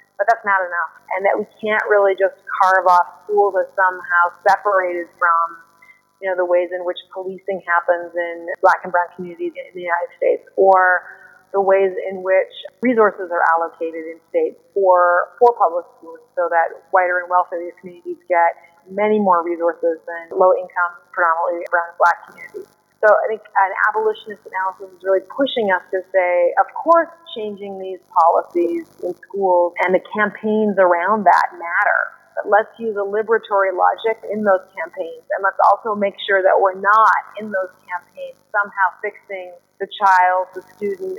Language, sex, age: English, female, 30-49